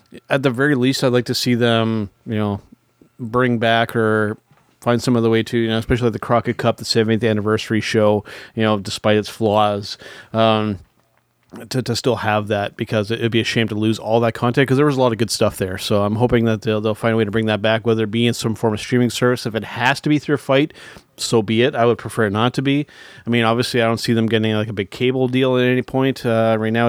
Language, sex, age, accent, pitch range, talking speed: English, male, 30-49, American, 110-120 Hz, 260 wpm